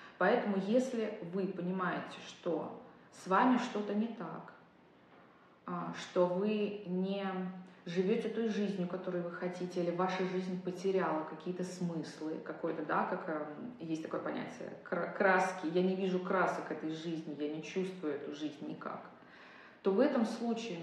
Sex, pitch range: female, 175-210 Hz